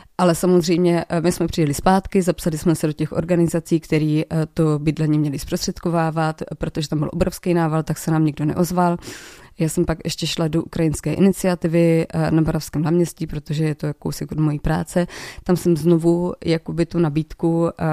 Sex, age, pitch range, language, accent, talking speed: female, 20-39, 160-180 Hz, Czech, native, 170 wpm